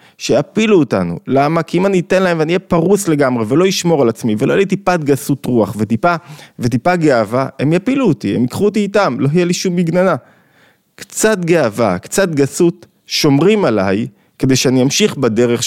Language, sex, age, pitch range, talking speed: Hebrew, male, 20-39, 110-165 Hz, 175 wpm